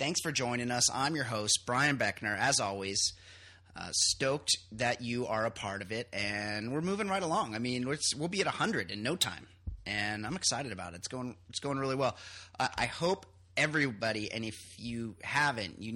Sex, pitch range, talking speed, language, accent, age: male, 95-130 Hz, 205 wpm, English, American, 30-49